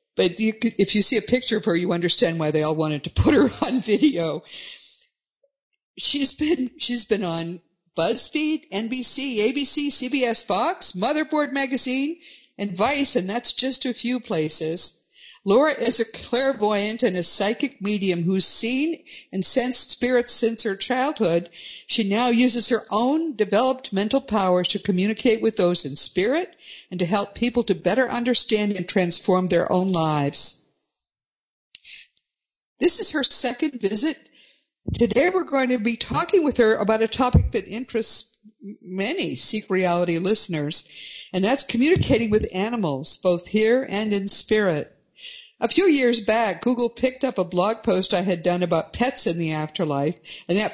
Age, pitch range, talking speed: 50-69, 185-255 Hz, 155 wpm